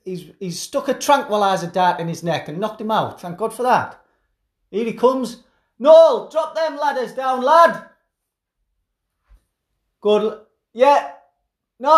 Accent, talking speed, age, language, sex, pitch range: British, 140 wpm, 30-49, English, male, 185-280 Hz